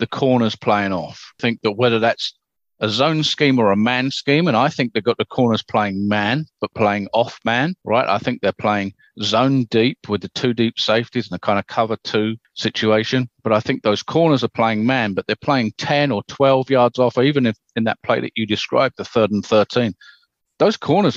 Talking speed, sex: 220 wpm, male